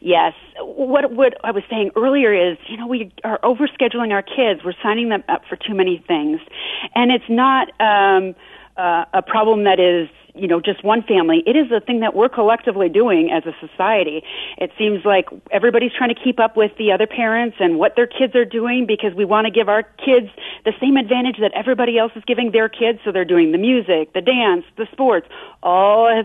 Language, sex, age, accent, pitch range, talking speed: English, female, 40-59, American, 195-255 Hz, 215 wpm